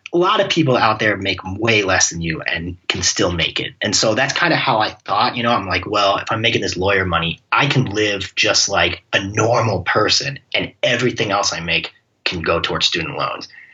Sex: male